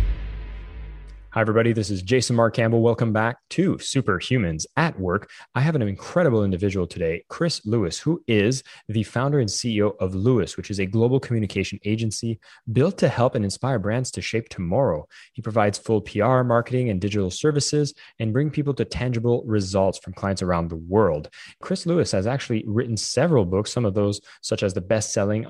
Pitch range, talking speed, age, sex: 100-125 Hz, 180 wpm, 20-39, male